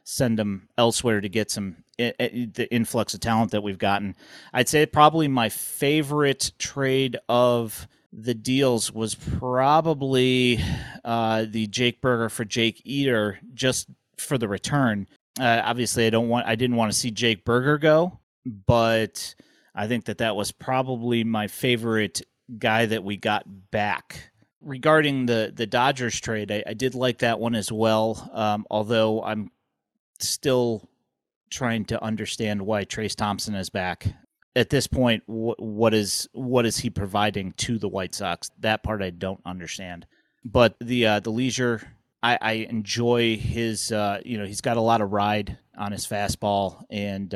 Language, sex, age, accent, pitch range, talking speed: English, male, 30-49, American, 105-125 Hz, 160 wpm